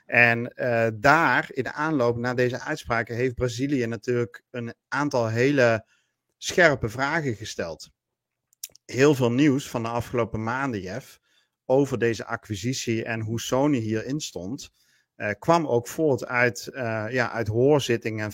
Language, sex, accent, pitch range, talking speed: Dutch, male, Dutch, 110-130 Hz, 140 wpm